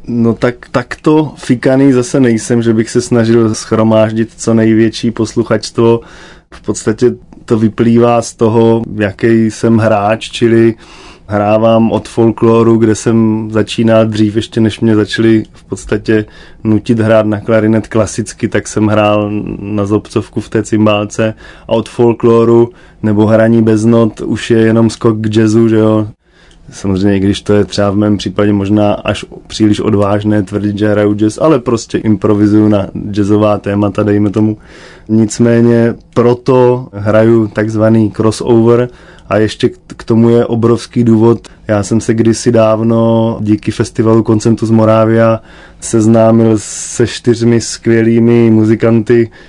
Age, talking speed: 20-39, 140 wpm